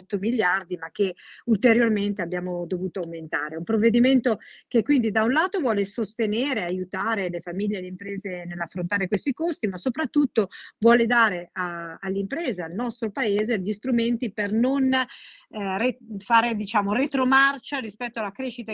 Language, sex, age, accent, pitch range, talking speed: Italian, female, 50-69, native, 180-230 Hz, 150 wpm